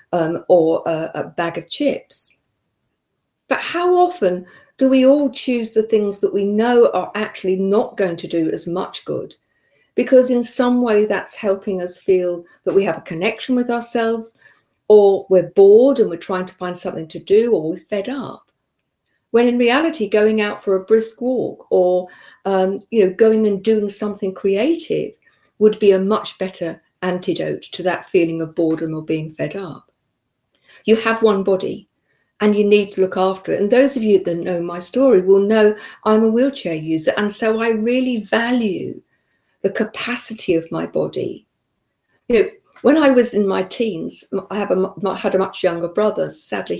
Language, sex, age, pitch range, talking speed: English, female, 50-69, 185-240 Hz, 180 wpm